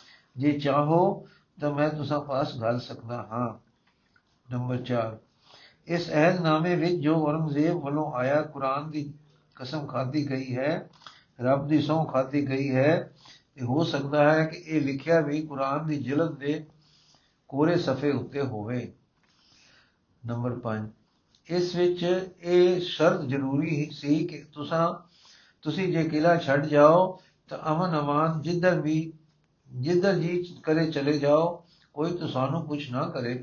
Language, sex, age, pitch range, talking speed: Punjabi, male, 60-79, 135-160 Hz, 140 wpm